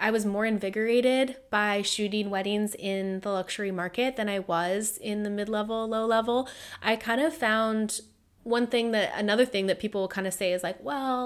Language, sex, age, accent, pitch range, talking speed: English, female, 20-39, American, 180-220 Hz, 190 wpm